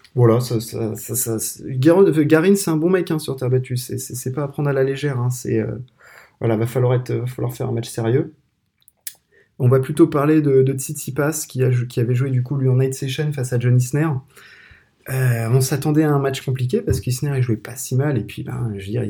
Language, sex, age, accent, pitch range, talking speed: French, male, 20-39, French, 115-130 Hz, 240 wpm